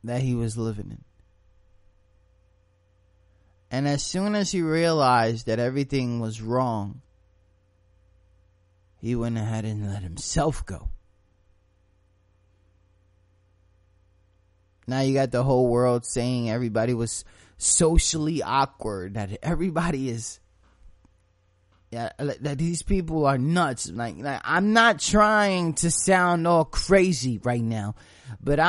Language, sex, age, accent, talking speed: English, male, 20-39, American, 110 wpm